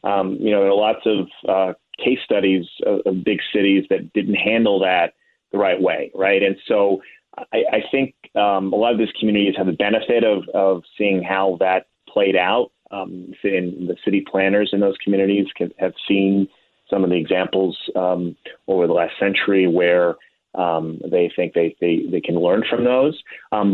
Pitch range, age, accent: 90-100 Hz, 30-49, American